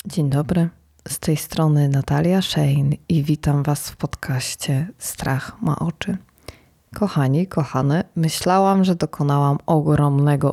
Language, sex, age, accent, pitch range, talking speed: Polish, female, 20-39, native, 145-170 Hz, 120 wpm